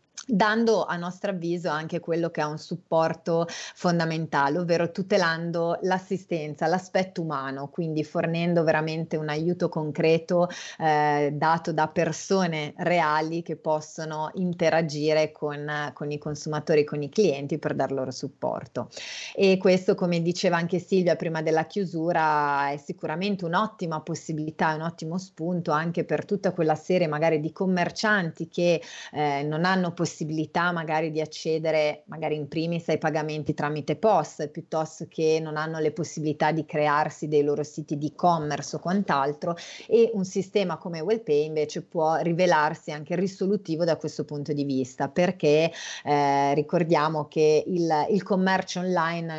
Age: 30-49